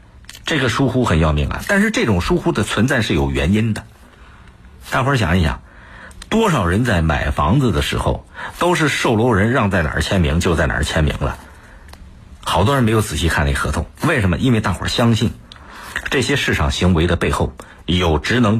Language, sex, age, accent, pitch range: Chinese, male, 50-69, native, 75-110 Hz